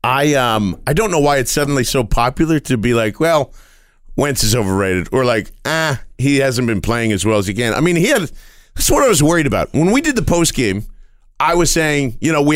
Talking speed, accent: 245 wpm, American